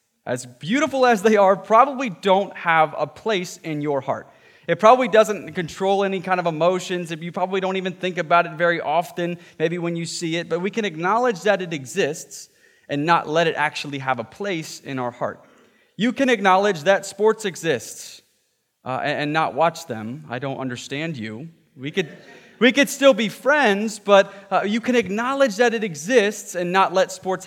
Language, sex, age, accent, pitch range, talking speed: English, male, 20-39, American, 150-205 Hz, 190 wpm